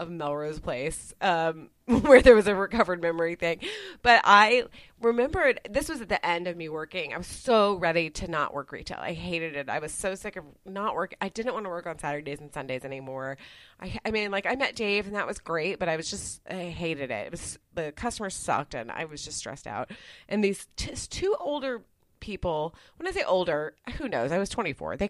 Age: 30-49